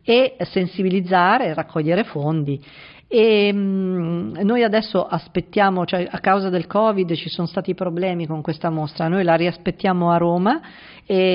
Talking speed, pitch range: 150 wpm, 165-185 Hz